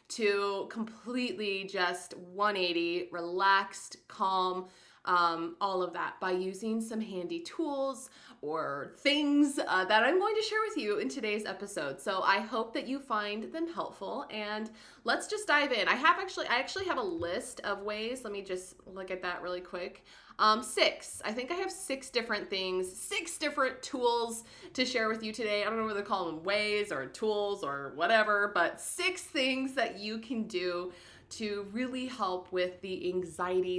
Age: 20-39